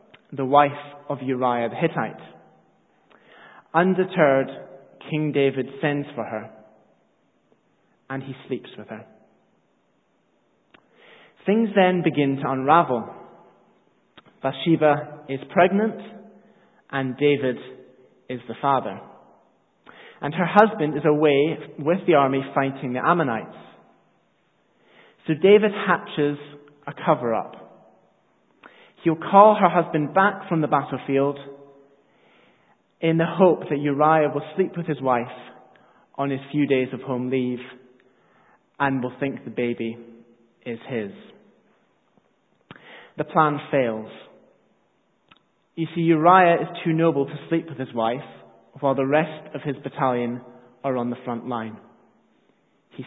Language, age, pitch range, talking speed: English, 30-49, 130-165 Hz, 120 wpm